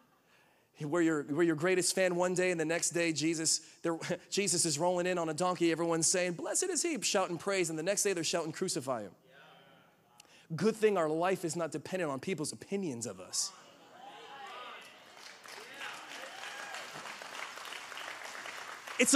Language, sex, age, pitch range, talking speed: English, male, 30-49, 155-190 Hz, 150 wpm